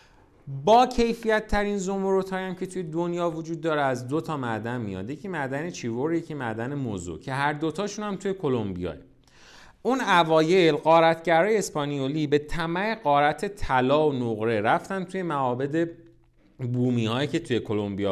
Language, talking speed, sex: Persian, 150 wpm, male